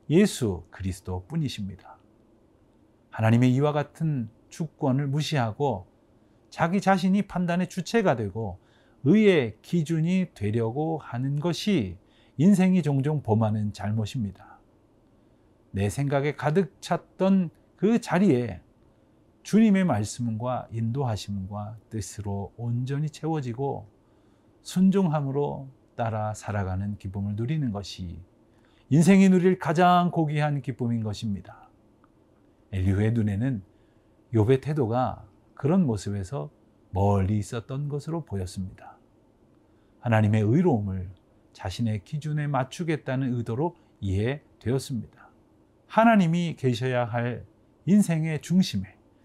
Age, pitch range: 40-59, 105-150 Hz